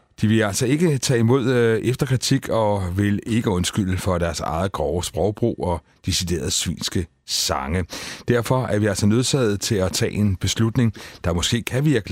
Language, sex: Danish, male